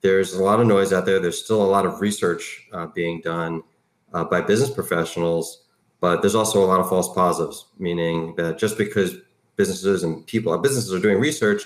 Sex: male